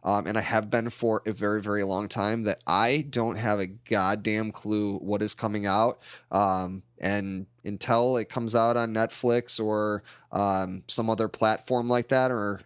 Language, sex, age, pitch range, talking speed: English, male, 20-39, 100-120 Hz, 180 wpm